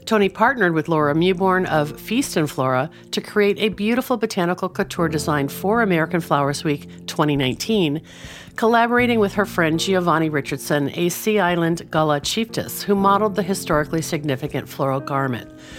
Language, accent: English, American